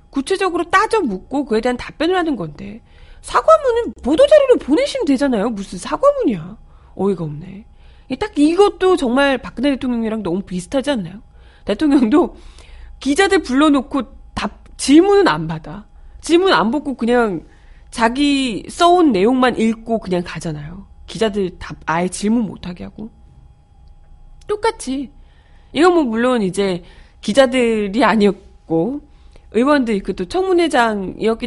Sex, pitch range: female, 190-280 Hz